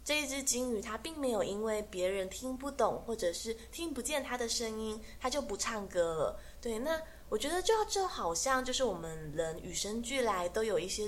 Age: 20-39